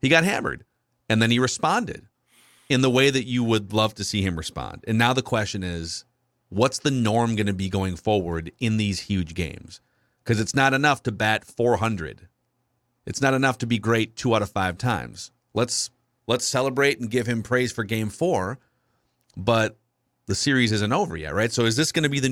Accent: American